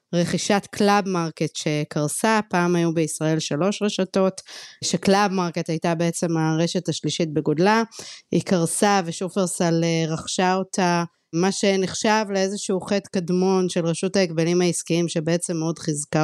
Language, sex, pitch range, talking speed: Hebrew, female, 170-205 Hz, 120 wpm